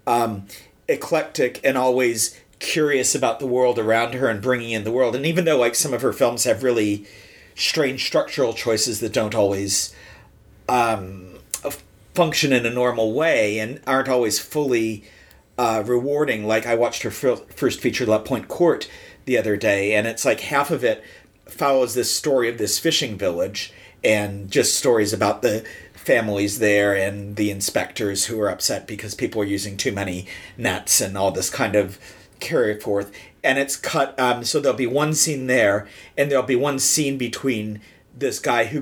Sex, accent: male, American